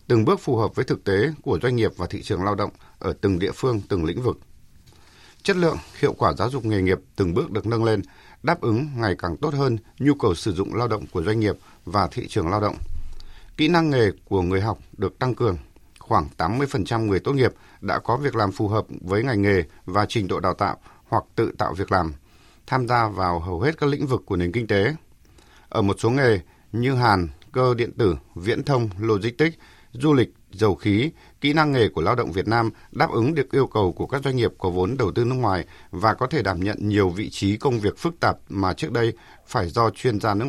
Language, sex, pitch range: Vietnamese, male, 95-125 Hz